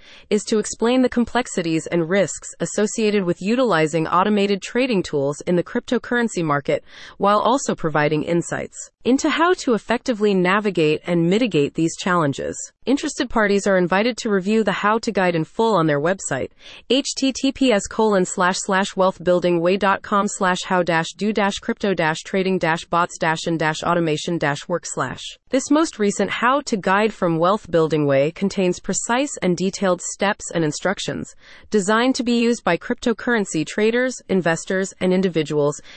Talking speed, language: 155 wpm, English